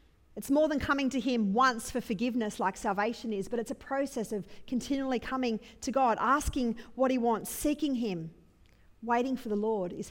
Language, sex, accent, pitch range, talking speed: English, female, Australian, 225-280 Hz, 190 wpm